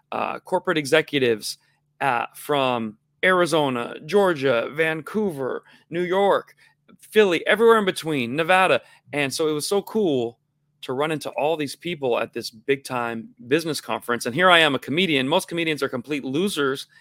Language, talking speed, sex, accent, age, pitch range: English, 155 wpm, male, American, 30-49, 145-195 Hz